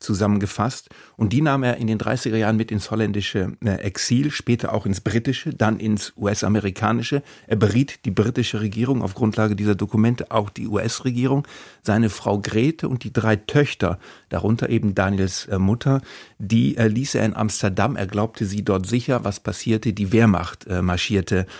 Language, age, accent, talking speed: German, 50-69, German, 170 wpm